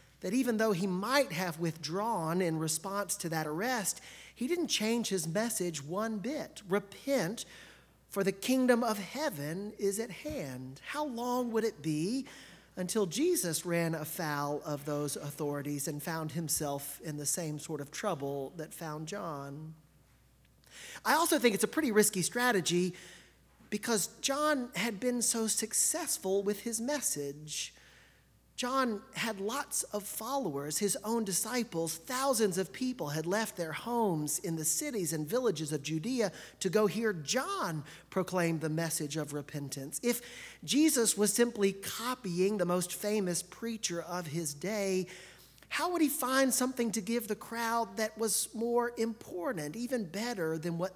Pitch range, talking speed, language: 160-230 Hz, 150 wpm, English